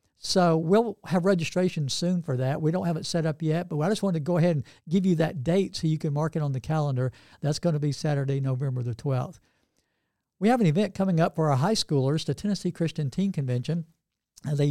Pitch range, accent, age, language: 145-180 Hz, American, 60-79, English